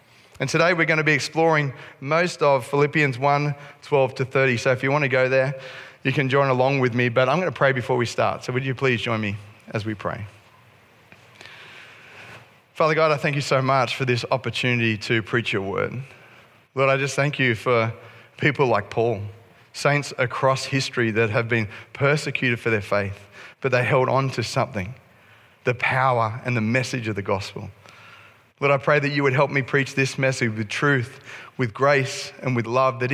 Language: English